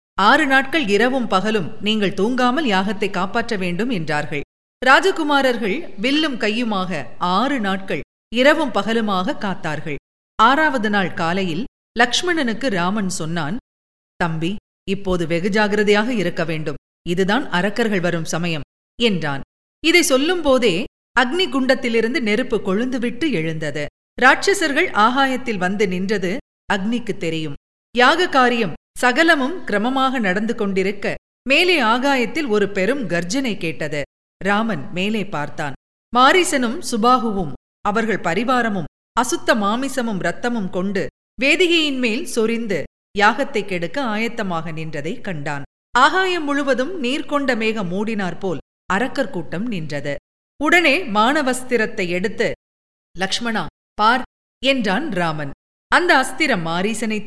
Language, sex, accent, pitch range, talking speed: Tamil, female, native, 180-255 Hz, 100 wpm